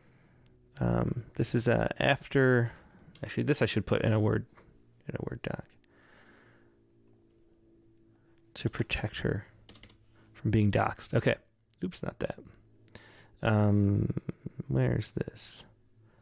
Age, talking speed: 30-49, 115 wpm